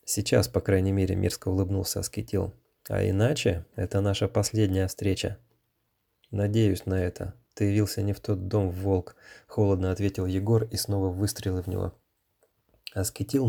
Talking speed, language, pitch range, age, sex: 140 wpm, Russian, 100-115 Hz, 20-39, male